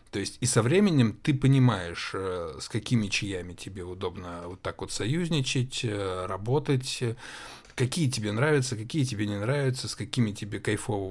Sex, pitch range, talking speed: male, 105-130 Hz, 150 wpm